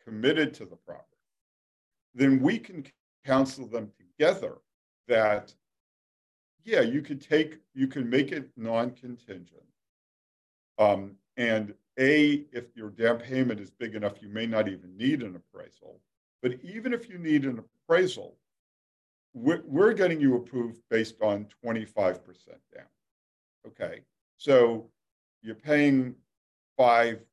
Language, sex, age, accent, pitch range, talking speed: English, male, 50-69, American, 100-130 Hz, 130 wpm